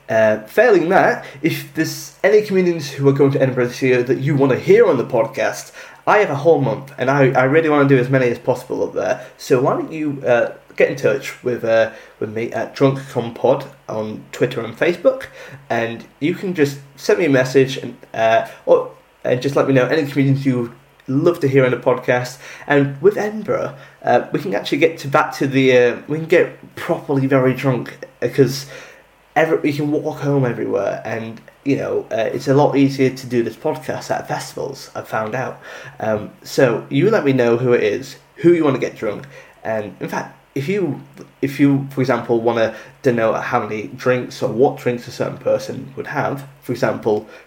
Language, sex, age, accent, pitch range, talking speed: English, male, 20-39, British, 125-150 Hz, 210 wpm